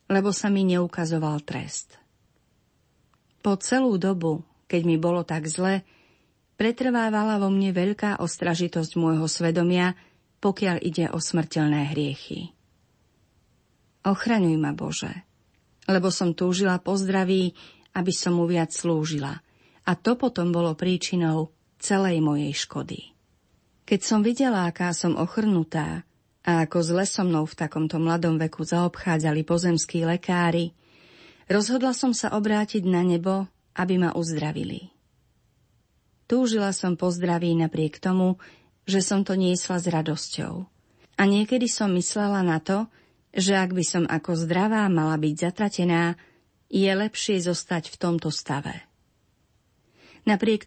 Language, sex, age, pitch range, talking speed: Slovak, female, 40-59, 165-200 Hz, 125 wpm